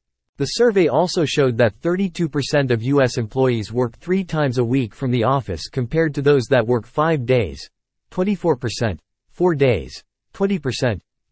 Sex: male